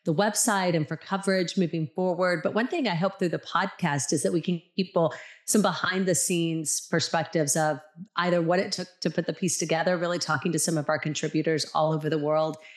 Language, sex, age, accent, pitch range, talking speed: English, female, 40-59, American, 155-185 Hz, 215 wpm